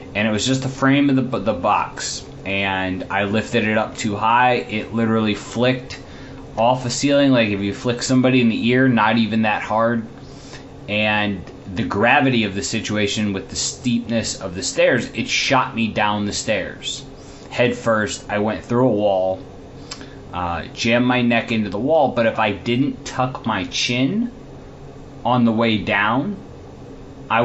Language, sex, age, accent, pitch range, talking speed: English, male, 20-39, American, 105-130 Hz, 175 wpm